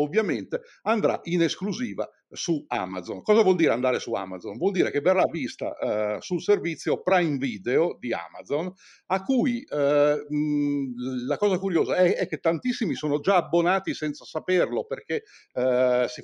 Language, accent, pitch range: Italian, native, 135-190 Hz